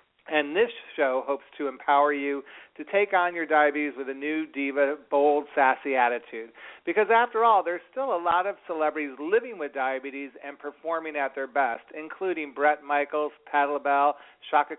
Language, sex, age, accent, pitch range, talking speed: English, male, 40-59, American, 135-160 Hz, 170 wpm